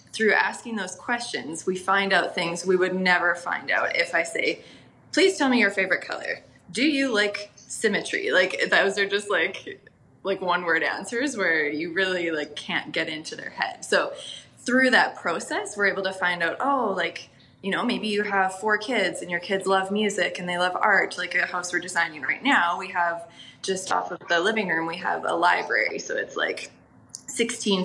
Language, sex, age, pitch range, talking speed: English, female, 20-39, 170-215 Hz, 205 wpm